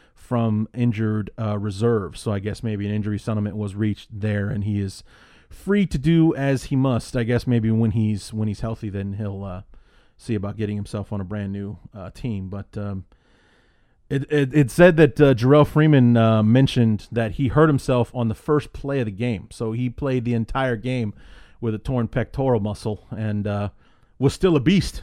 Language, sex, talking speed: English, male, 200 wpm